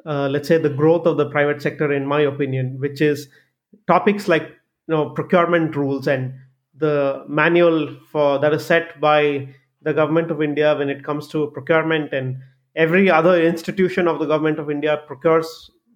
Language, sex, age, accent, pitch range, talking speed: English, male, 30-49, Indian, 145-170 Hz, 175 wpm